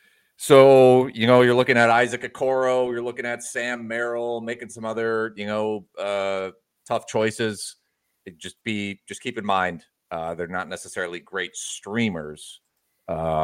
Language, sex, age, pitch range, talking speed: English, male, 30-49, 100-125 Hz, 155 wpm